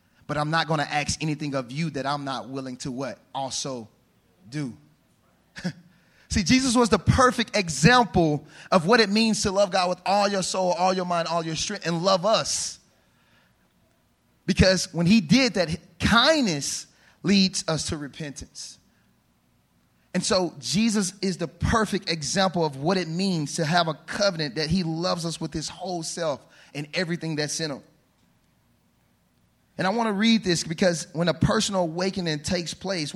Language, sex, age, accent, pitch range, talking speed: English, male, 30-49, American, 150-190 Hz, 170 wpm